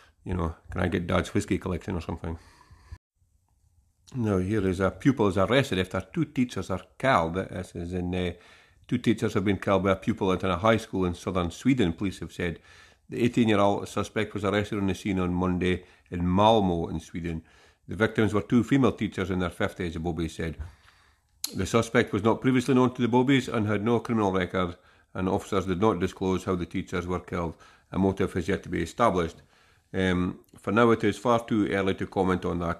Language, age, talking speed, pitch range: English, 50-69, 205 wpm, 90-105 Hz